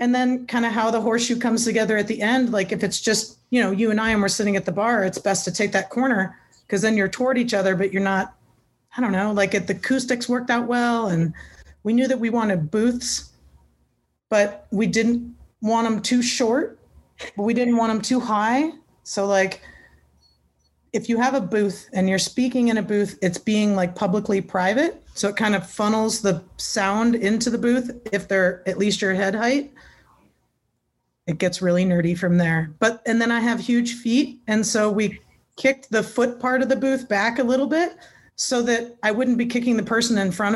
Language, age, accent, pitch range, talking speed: English, 30-49, American, 195-240 Hz, 215 wpm